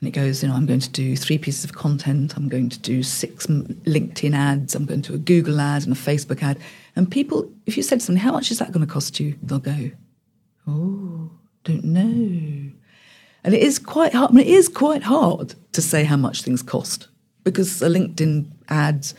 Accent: British